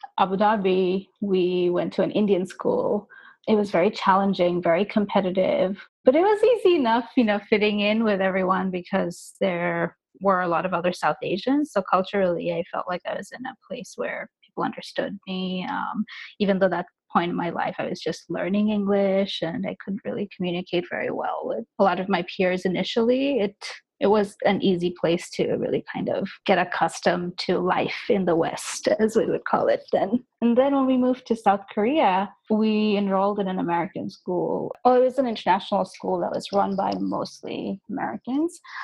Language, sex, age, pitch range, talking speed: English, female, 20-39, 185-230 Hz, 190 wpm